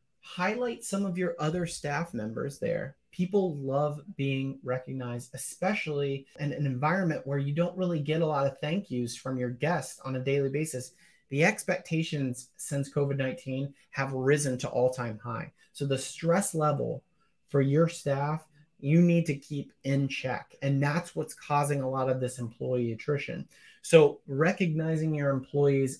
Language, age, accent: English, 30-49, American